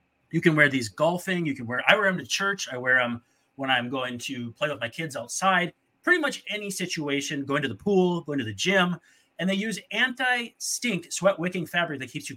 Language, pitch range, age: English, 125-175 Hz, 30-49